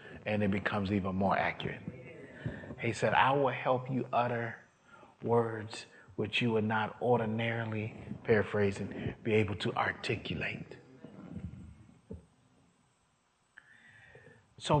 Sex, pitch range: male, 100-120 Hz